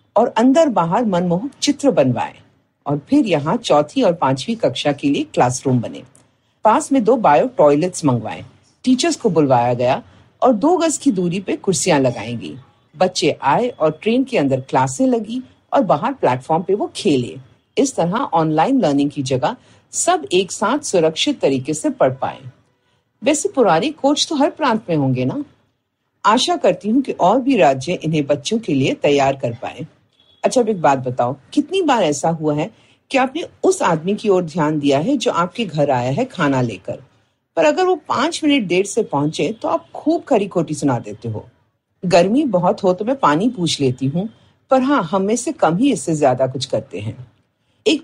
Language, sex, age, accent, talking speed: Hindi, female, 50-69, native, 150 wpm